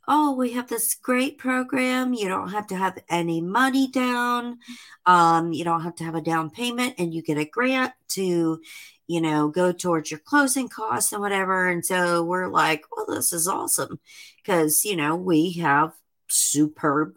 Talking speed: 180 wpm